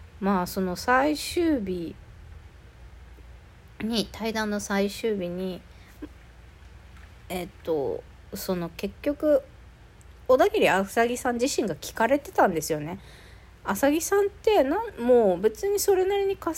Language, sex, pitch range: Japanese, female, 165-250 Hz